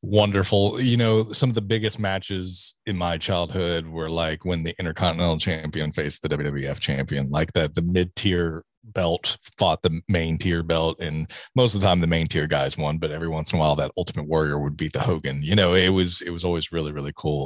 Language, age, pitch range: English, 30-49, 85-105 Hz